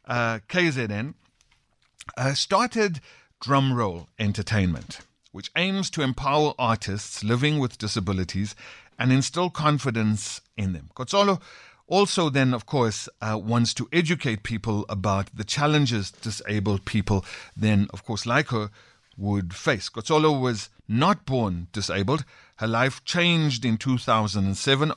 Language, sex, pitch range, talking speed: English, male, 105-140 Hz, 125 wpm